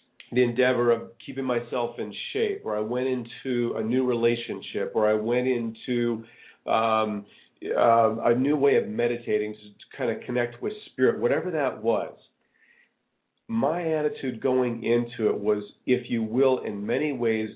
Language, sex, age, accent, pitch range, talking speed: English, male, 40-59, American, 115-135 Hz, 155 wpm